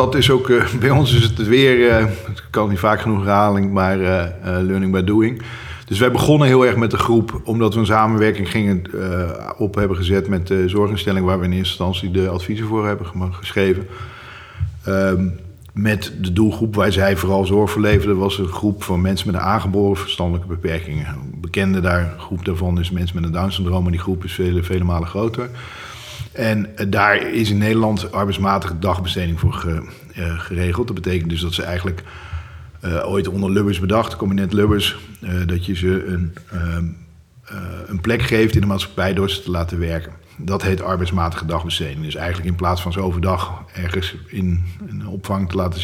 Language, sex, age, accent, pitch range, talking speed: Dutch, male, 50-69, Dutch, 90-105 Hz, 190 wpm